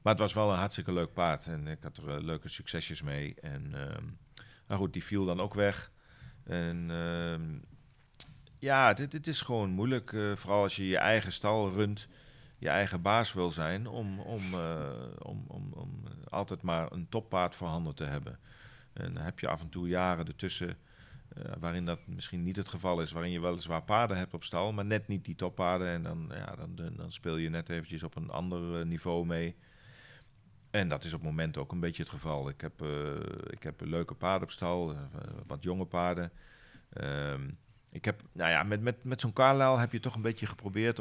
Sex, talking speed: male, 210 wpm